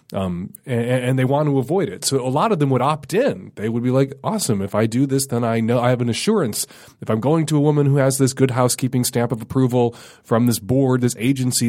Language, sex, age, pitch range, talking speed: English, male, 30-49, 115-140 Hz, 255 wpm